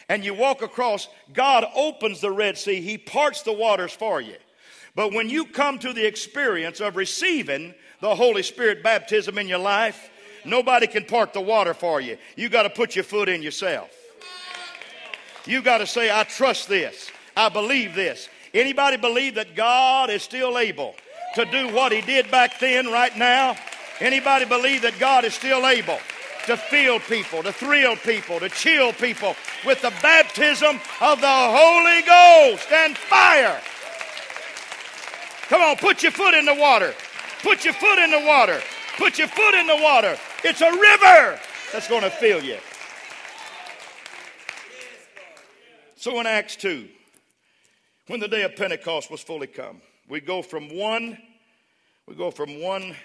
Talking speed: 165 wpm